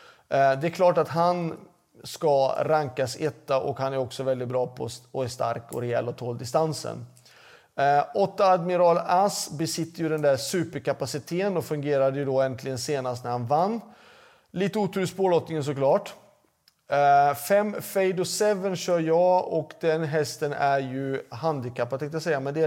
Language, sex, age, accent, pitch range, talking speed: Swedish, male, 30-49, native, 130-170 Hz, 165 wpm